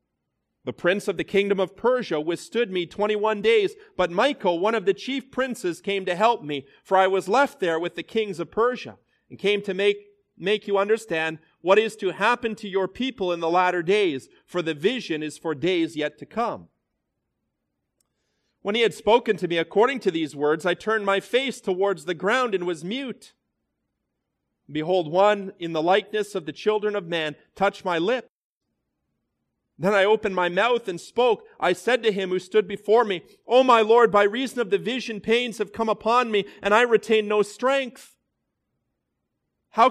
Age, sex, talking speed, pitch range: 40-59, male, 190 wpm, 180-230 Hz